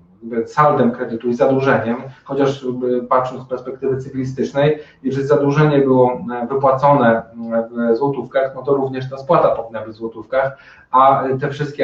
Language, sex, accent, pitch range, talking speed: Polish, male, native, 120-140 Hz, 135 wpm